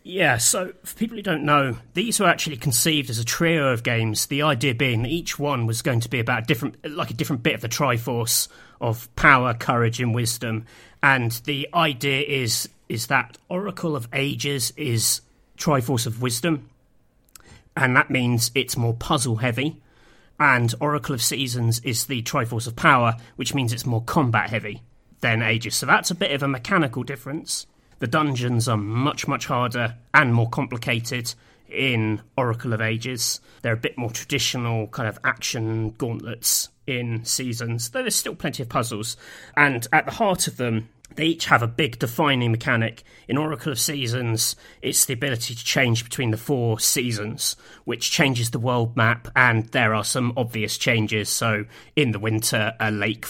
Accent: British